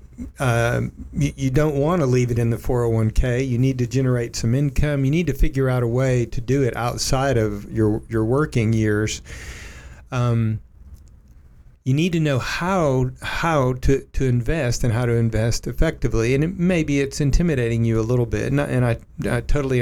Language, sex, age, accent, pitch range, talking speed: English, male, 50-69, American, 115-150 Hz, 190 wpm